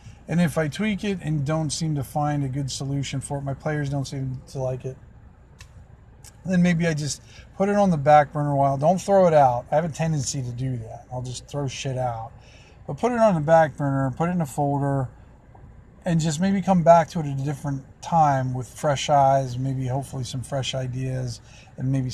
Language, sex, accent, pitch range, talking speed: English, male, American, 130-165 Hz, 225 wpm